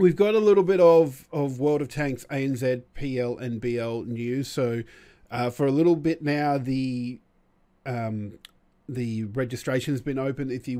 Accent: Australian